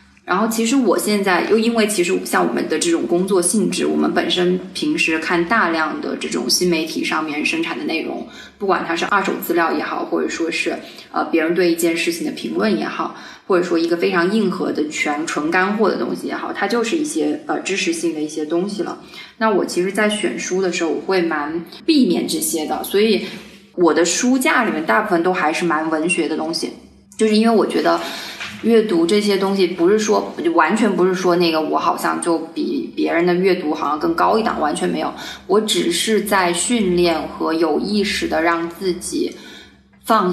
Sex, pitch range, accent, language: female, 170-220 Hz, native, Chinese